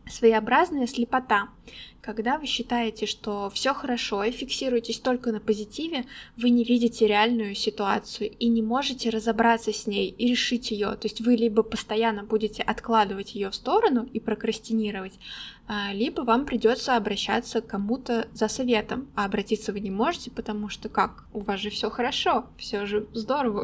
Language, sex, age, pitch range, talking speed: Russian, female, 20-39, 215-240 Hz, 160 wpm